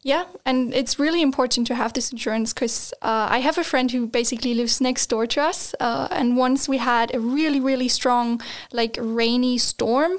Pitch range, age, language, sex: 230-265 Hz, 10-29, English, female